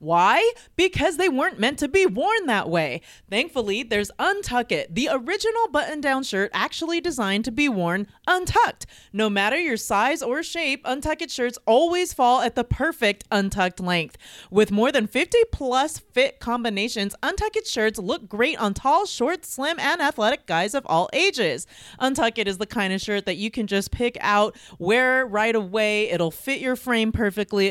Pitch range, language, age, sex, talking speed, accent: 205-290 Hz, English, 30-49, female, 175 wpm, American